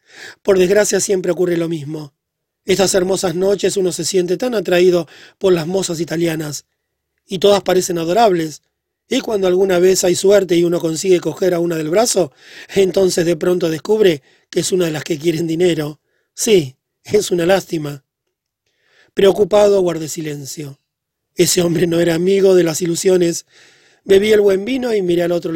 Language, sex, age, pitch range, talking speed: Spanish, male, 30-49, 170-200 Hz, 165 wpm